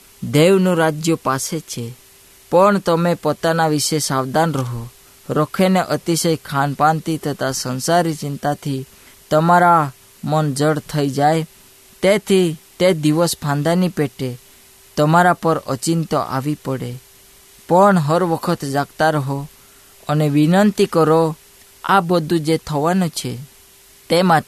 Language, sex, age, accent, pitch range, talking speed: Hindi, female, 20-39, native, 140-165 Hz, 105 wpm